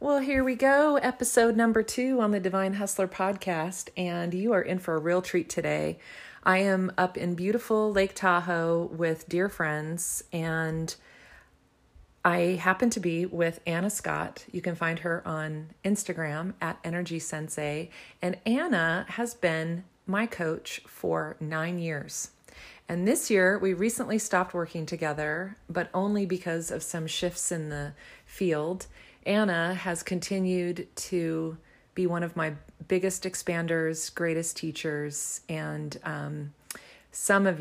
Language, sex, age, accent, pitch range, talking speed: English, female, 40-59, American, 160-185 Hz, 145 wpm